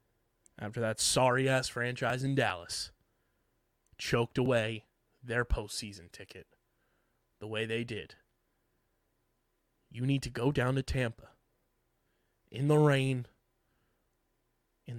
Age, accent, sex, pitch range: 20-39, American, male, 105-135 Hz